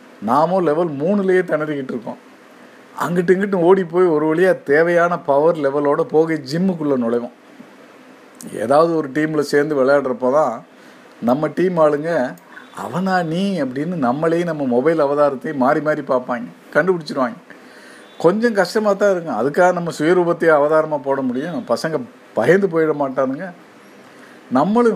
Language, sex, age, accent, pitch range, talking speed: Tamil, male, 50-69, native, 140-175 Hz, 125 wpm